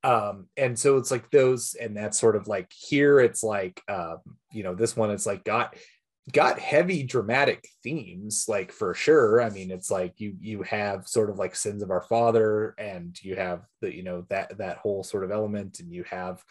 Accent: American